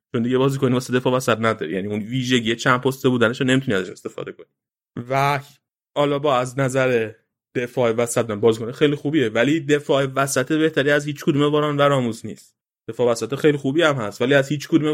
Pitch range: 120-145 Hz